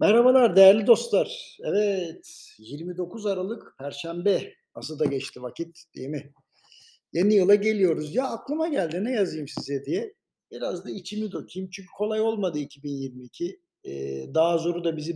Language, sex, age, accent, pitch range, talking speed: Turkish, male, 60-79, native, 160-210 Hz, 145 wpm